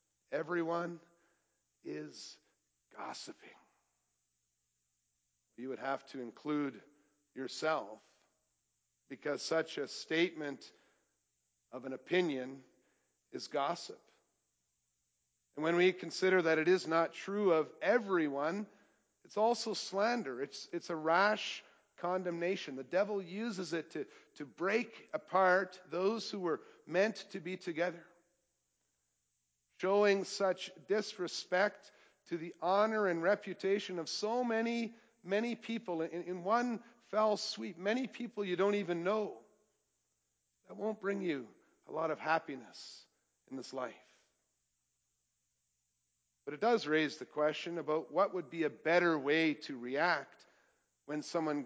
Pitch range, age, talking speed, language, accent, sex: 130-195 Hz, 50-69, 120 wpm, English, American, male